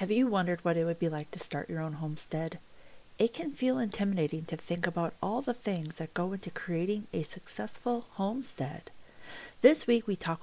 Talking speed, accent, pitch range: 195 wpm, American, 170-230 Hz